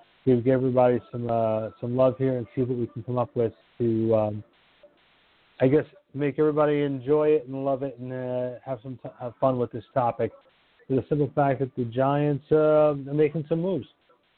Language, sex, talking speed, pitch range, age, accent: English, male, 200 wpm, 125-150 Hz, 40-59, American